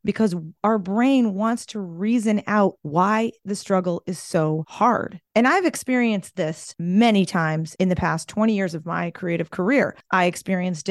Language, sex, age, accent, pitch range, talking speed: English, female, 30-49, American, 180-230 Hz, 165 wpm